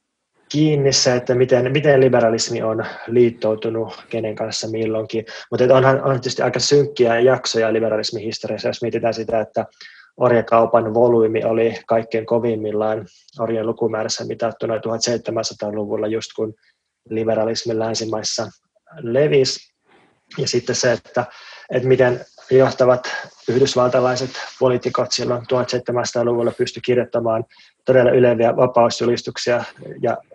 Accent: native